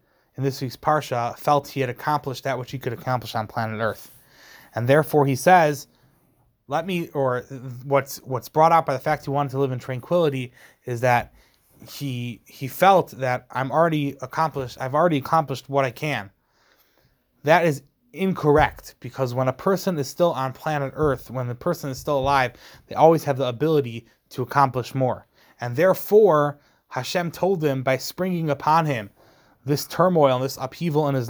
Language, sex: English, male